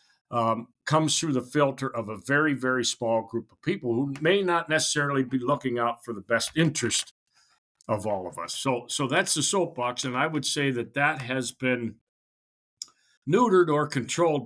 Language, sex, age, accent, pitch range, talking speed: English, male, 60-79, American, 125-150 Hz, 185 wpm